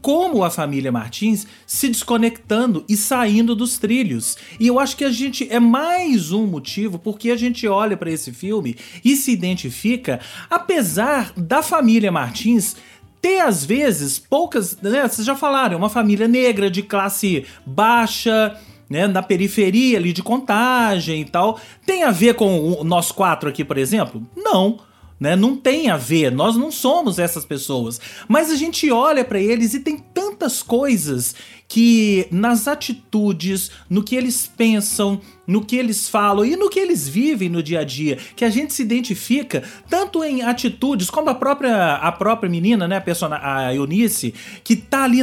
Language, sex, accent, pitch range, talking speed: Portuguese, male, Brazilian, 190-260 Hz, 170 wpm